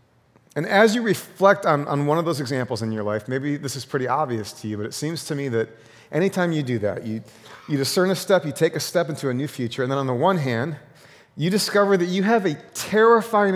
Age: 30-49